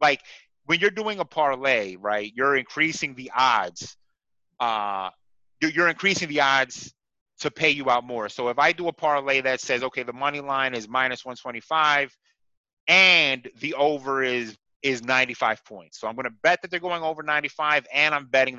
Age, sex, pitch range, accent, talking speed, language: 30-49, male, 120-165 Hz, American, 180 wpm, English